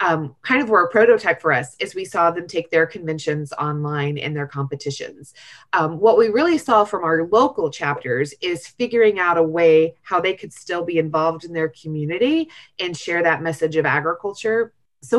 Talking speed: 195 wpm